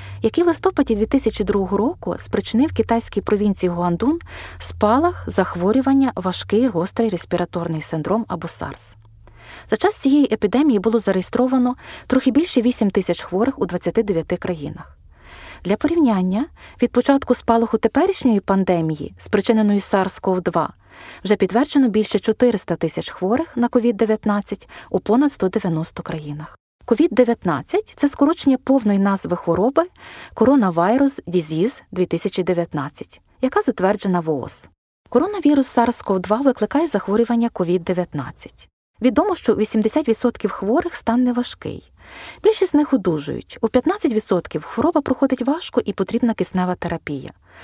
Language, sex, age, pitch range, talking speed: Ukrainian, female, 20-39, 180-255 Hz, 115 wpm